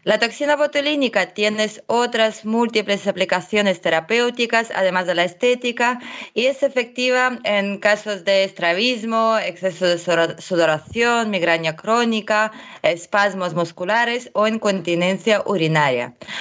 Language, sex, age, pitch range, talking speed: Spanish, female, 20-39, 180-225 Hz, 105 wpm